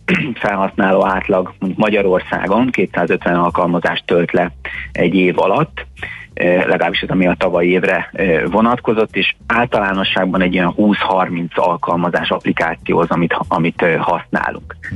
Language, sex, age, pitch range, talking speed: Hungarian, male, 30-49, 90-100 Hz, 110 wpm